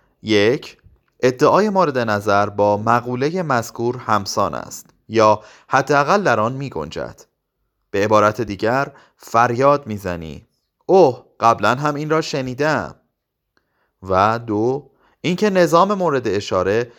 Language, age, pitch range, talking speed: Persian, 30-49, 105-140 Hz, 115 wpm